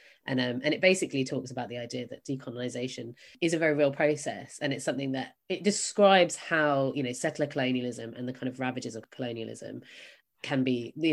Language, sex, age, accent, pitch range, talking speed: English, female, 20-39, British, 125-160 Hz, 200 wpm